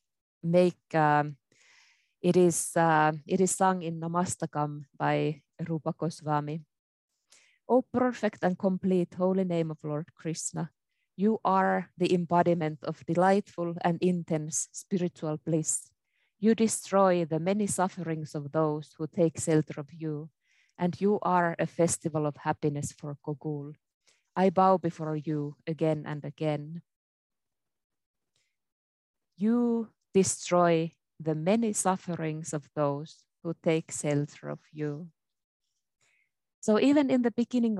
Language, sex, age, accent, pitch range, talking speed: English, female, 20-39, Finnish, 155-185 Hz, 120 wpm